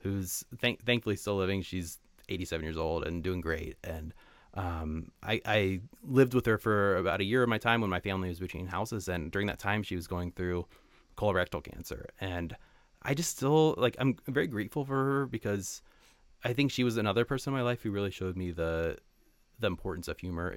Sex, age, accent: male, 30-49, American